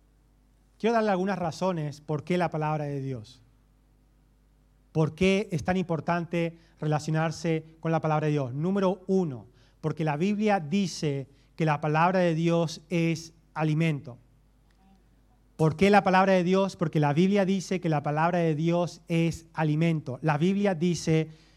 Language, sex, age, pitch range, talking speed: Spanish, male, 30-49, 145-185 Hz, 150 wpm